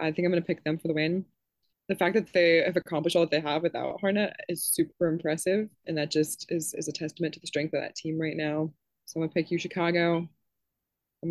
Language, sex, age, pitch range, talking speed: English, female, 20-39, 155-190 Hz, 245 wpm